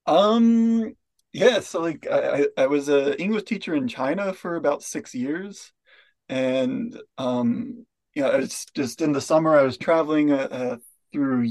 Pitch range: 145-240 Hz